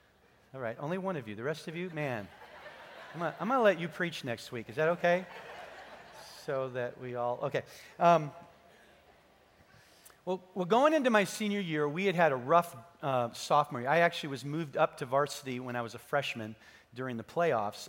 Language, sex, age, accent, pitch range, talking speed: English, male, 40-59, American, 125-175 Hz, 195 wpm